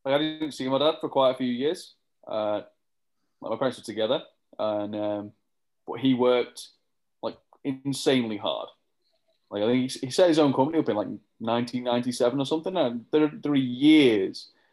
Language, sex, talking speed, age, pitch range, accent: English, male, 180 wpm, 20-39, 115-135 Hz, British